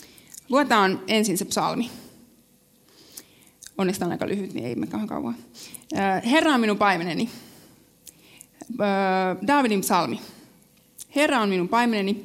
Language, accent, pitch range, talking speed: Finnish, native, 190-235 Hz, 110 wpm